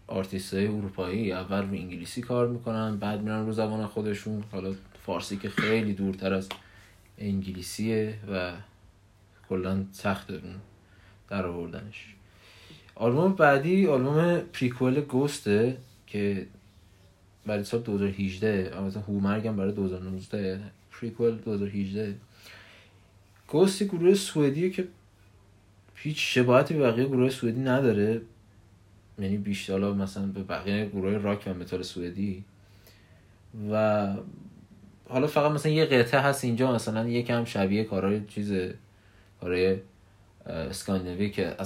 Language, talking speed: Persian, 110 wpm